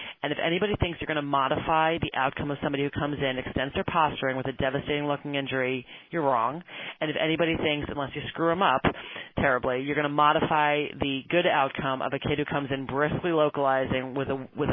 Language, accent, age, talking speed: English, American, 30-49, 210 wpm